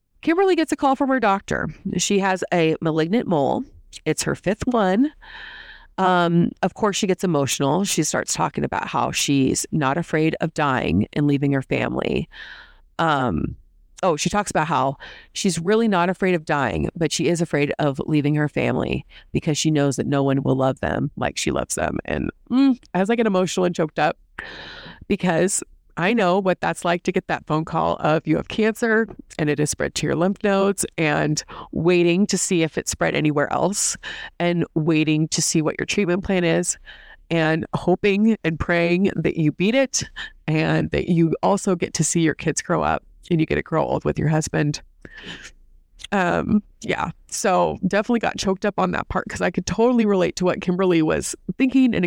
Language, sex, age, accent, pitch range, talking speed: English, female, 30-49, American, 155-195 Hz, 195 wpm